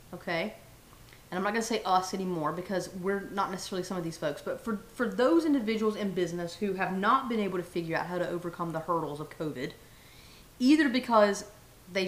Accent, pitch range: American, 175-230 Hz